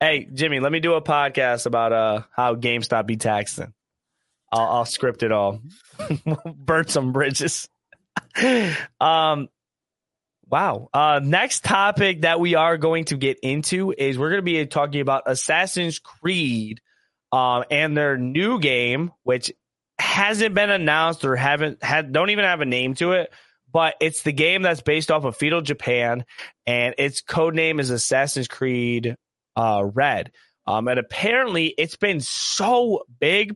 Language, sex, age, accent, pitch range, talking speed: English, male, 20-39, American, 125-175 Hz, 155 wpm